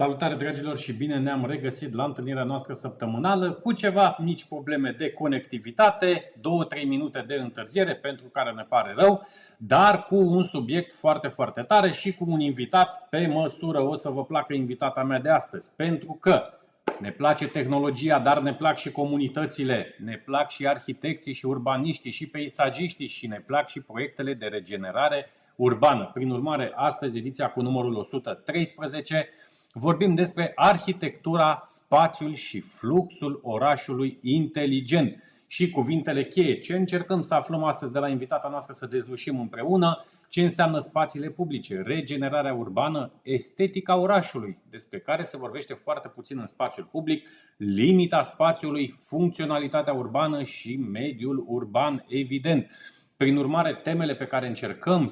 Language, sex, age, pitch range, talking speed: Romanian, male, 30-49, 135-165 Hz, 145 wpm